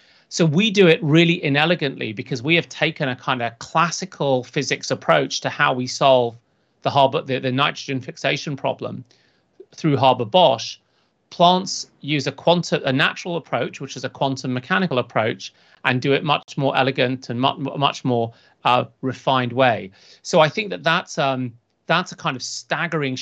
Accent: British